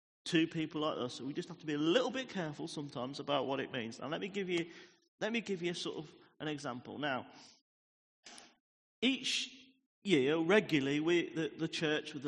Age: 40-59